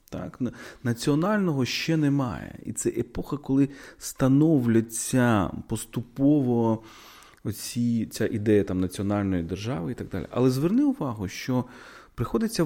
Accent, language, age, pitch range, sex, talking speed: native, Ukrainian, 30-49, 105-155 Hz, male, 115 wpm